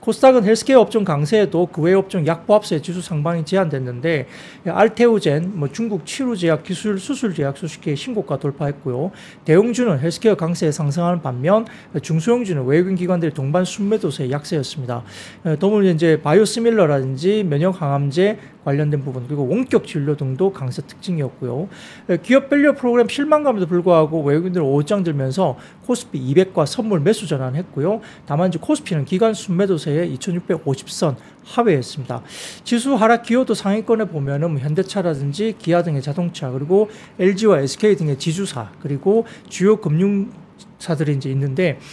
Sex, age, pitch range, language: male, 40-59, 150-205 Hz, Korean